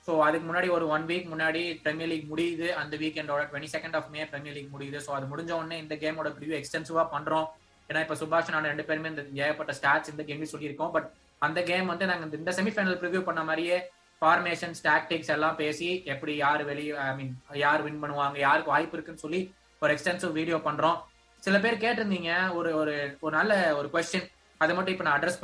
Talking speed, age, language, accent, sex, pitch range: 195 wpm, 20-39, Tamil, native, male, 155-185 Hz